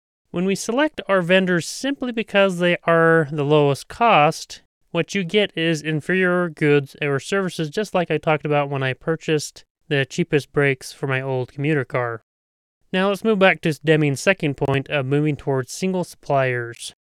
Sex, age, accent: male, 30-49, American